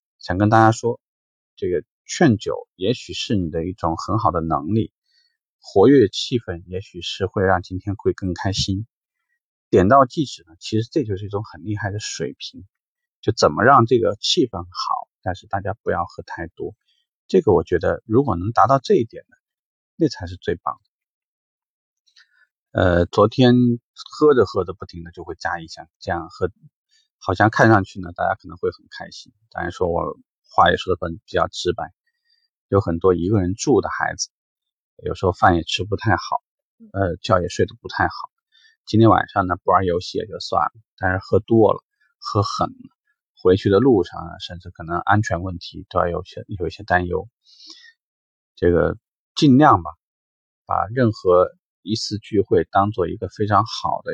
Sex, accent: male, native